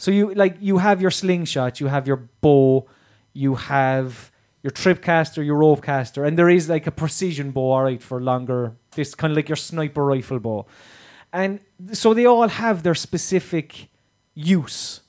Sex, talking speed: male, 175 wpm